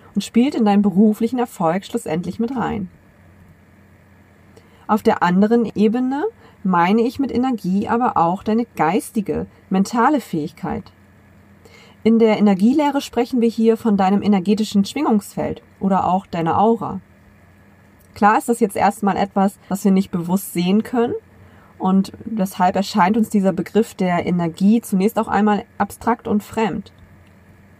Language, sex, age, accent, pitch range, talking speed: German, female, 30-49, German, 165-225 Hz, 135 wpm